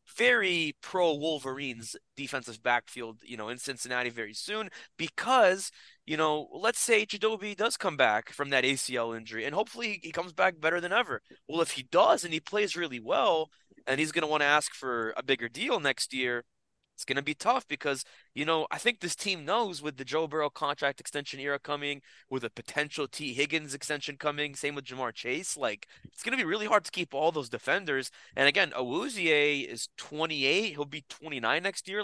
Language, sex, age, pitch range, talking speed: English, male, 20-39, 135-175 Hz, 200 wpm